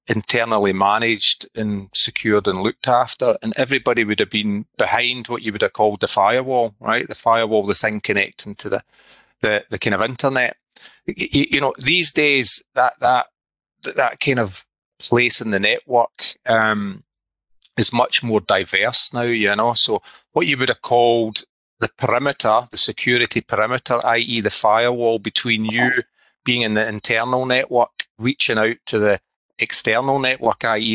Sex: male